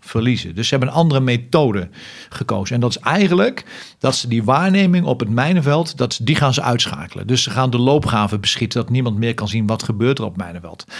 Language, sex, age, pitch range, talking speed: Dutch, male, 40-59, 120-150 Hz, 215 wpm